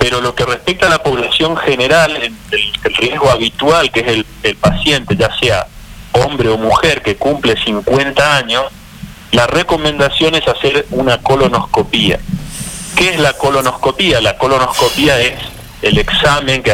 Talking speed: 145 wpm